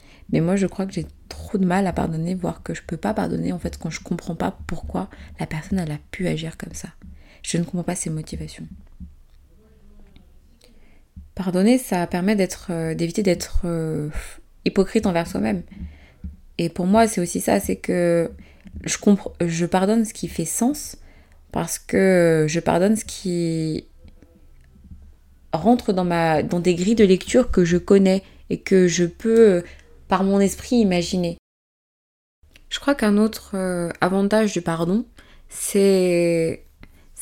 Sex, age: female, 20-39